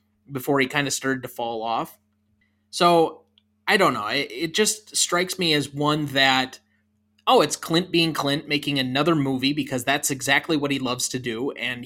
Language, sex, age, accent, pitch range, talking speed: English, male, 20-39, American, 125-150 Hz, 185 wpm